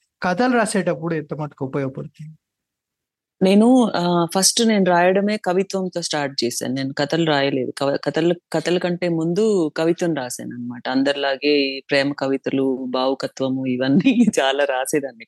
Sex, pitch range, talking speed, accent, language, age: female, 145-190 Hz, 105 wpm, native, Telugu, 30-49